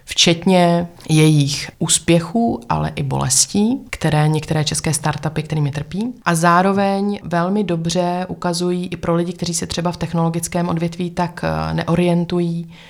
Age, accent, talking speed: 20-39, native, 130 wpm